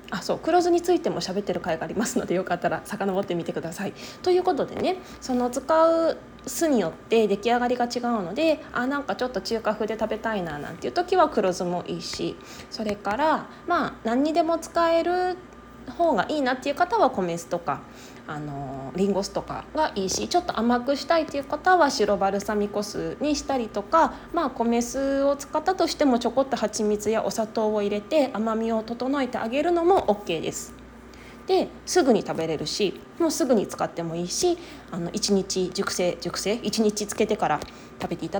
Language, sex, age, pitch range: Japanese, female, 20-39, 190-300 Hz